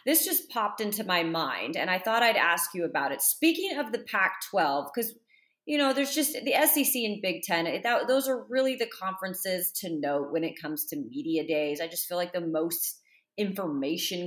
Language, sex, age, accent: English, female, 30-49, American